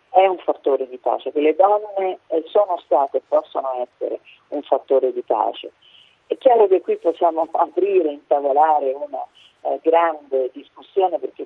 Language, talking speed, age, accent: Italian, 155 wpm, 40-59, native